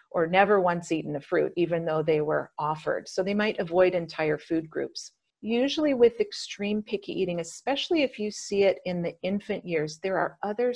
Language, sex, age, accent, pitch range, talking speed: English, female, 40-59, American, 160-205 Hz, 195 wpm